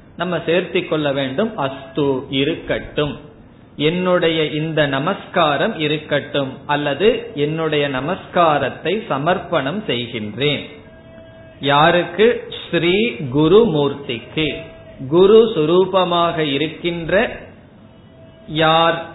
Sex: male